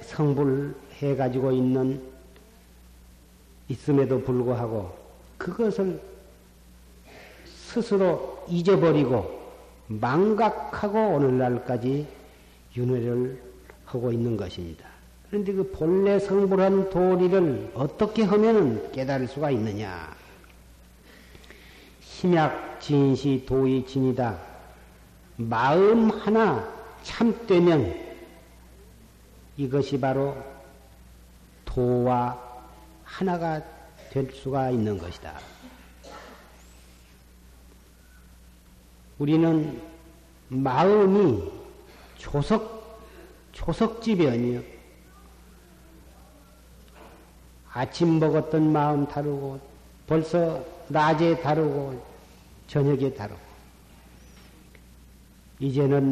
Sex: male